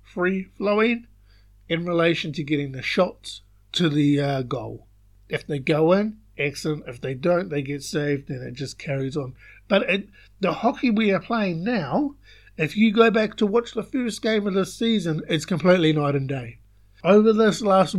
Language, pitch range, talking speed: English, 140-195 Hz, 185 wpm